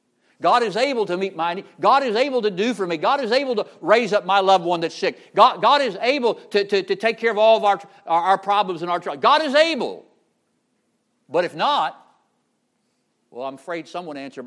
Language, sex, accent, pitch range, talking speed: English, male, American, 150-220 Hz, 230 wpm